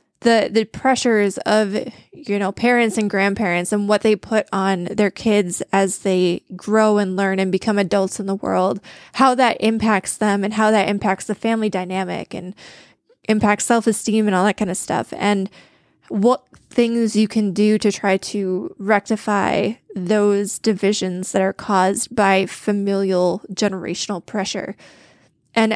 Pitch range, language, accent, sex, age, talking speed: 195-220 Hz, English, American, female, 10-29, 155 wpm